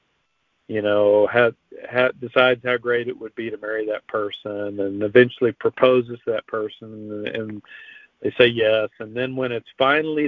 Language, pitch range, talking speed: English, 110-135 Hz, 150 wpm